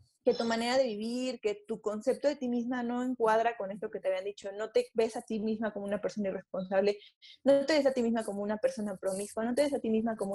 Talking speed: 265 wpm